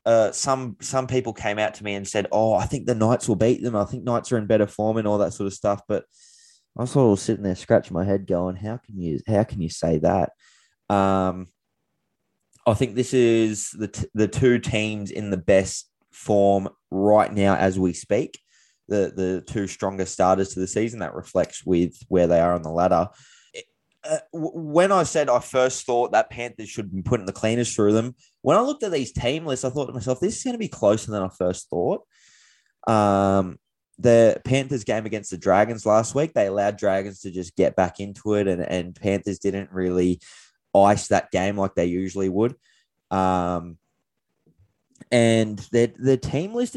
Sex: male